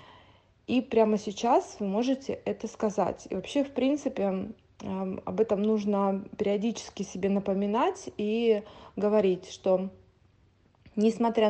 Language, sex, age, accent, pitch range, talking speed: Russian, female, 20-39, native, 195-230 Hz, 110 wpm